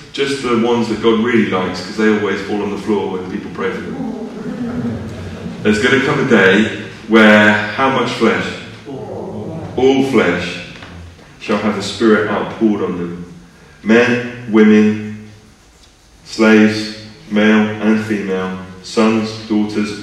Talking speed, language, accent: 140 wpm, English, British